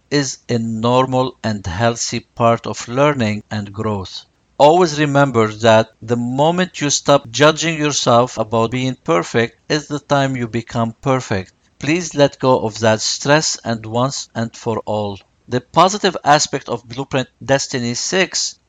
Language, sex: English, male